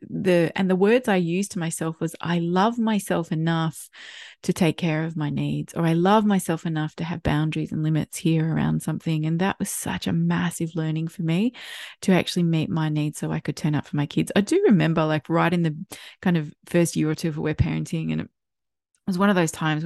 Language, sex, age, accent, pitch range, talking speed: English, female, 20-39, Australian, 155-185 Hz, 235 wpm